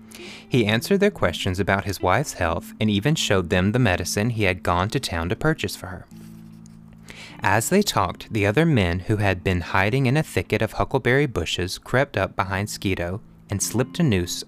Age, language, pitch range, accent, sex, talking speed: 30-49, English, 95-125 Hz, American, male, 195 wpm